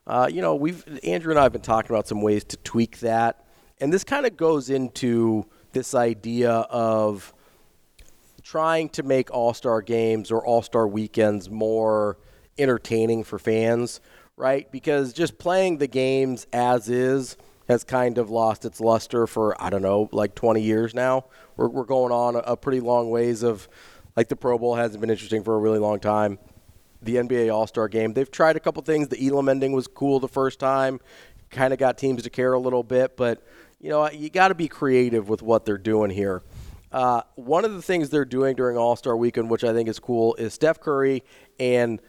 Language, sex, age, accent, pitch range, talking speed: English, male, 30-49, American, 110-135 Hz, 200 wpm